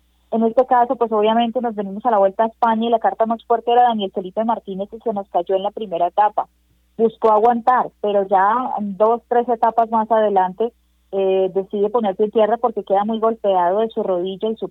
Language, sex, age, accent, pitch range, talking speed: Spanish, female, 20-39, Colombian, 185-225 Hz, 215 wpm